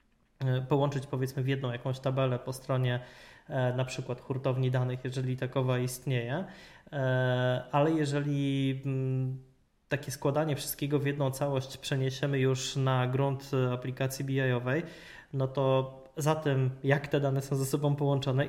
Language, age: Polish, 20-39